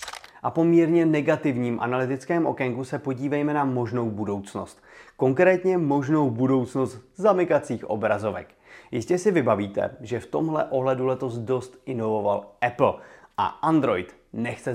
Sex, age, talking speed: male, 30-49, 120 wpm